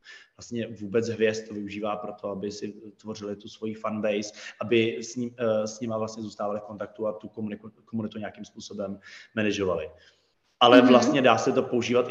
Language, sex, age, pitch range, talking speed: Slovak, male, 20-39, 110-150 Hz, 170 wpm